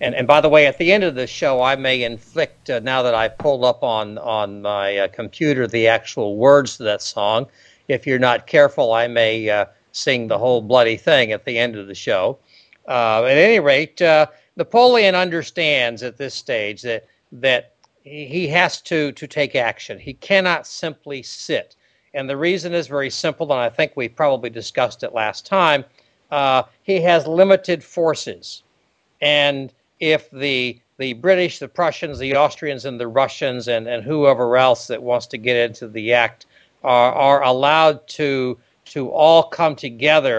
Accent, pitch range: American, 120-155 Hz